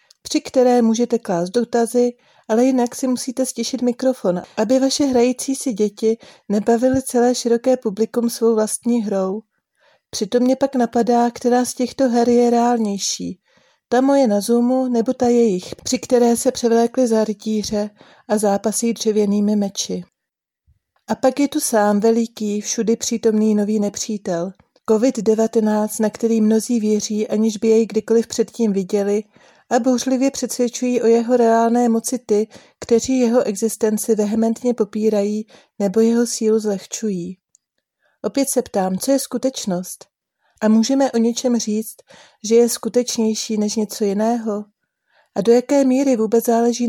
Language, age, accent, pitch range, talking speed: Czech, 40-59, native, 215-245 Hz, 140 wpm